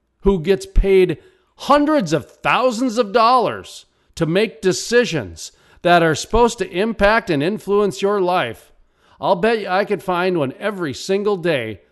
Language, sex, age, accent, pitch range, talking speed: English, male, 40-59, American, 160-250 Hz, 150 wpm